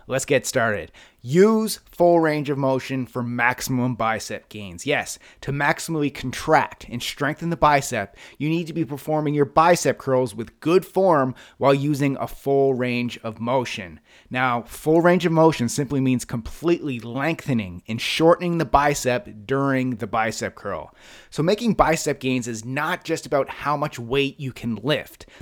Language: English